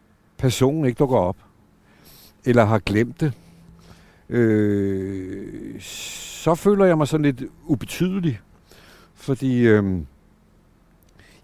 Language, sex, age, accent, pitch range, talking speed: Danish, male, 60-79, native, 100-135 Hz, 95 wpm